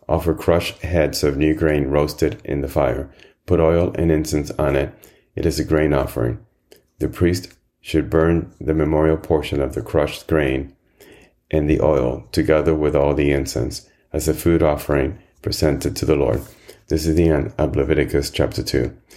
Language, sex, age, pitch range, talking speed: English, male, 30-49, 70-80 Hz, 175 wpm